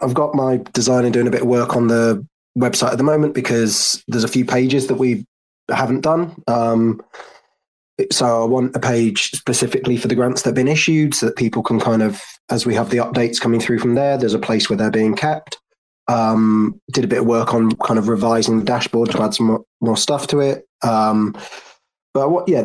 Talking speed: 220 wpm